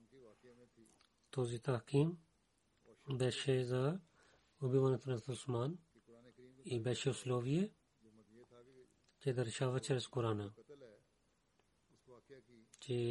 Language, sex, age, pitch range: Bulgarian, male, 40-59, 120-140 Hz